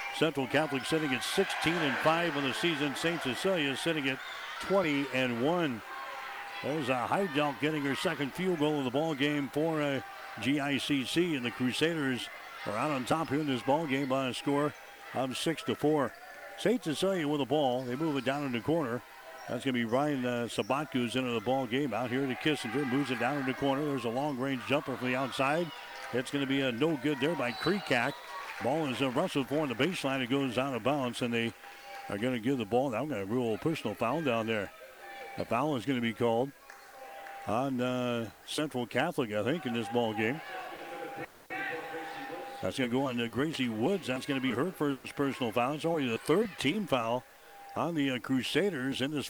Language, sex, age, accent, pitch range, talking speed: English, male, 60-79, American, 125-150 Hz, 210 wpm